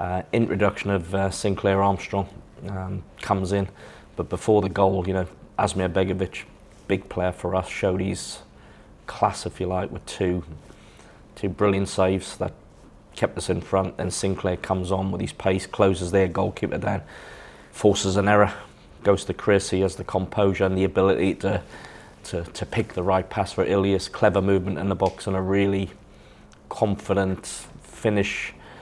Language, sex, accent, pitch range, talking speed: English, male, British, 95-100 Hz, 165 wpm